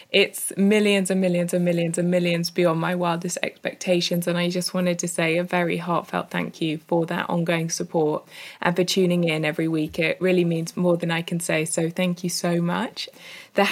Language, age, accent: English, 20-39, British